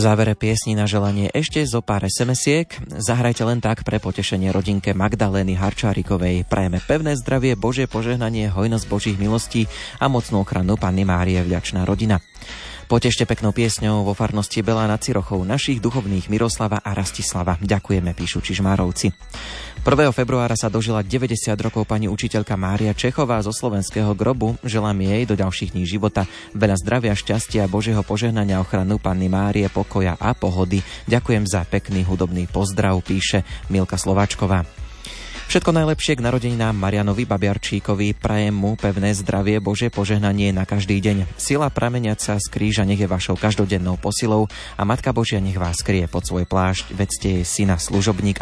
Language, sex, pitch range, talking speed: Slovak, male, 95-110 Hz, 155 wpm